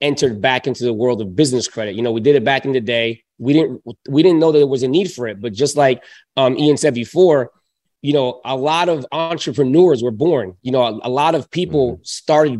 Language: English